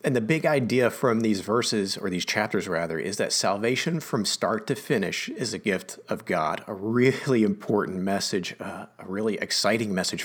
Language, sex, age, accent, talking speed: English, male, 40-59, American, 185 wpm